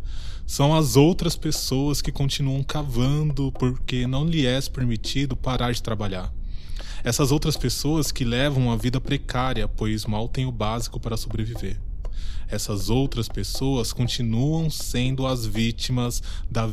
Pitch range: 105-135 Hz